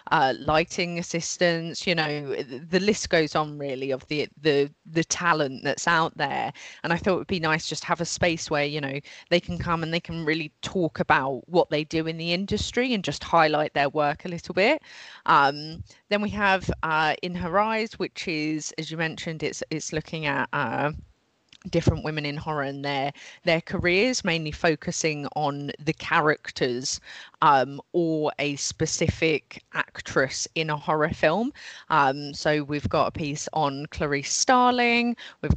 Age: 20-39